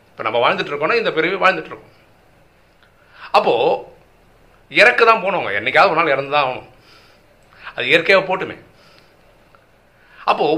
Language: Tamil